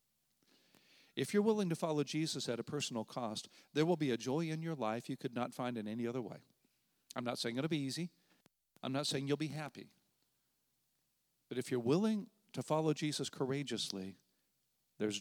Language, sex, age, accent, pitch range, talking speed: English, male, 50-69, American, 120-155 Hz, 185 wpm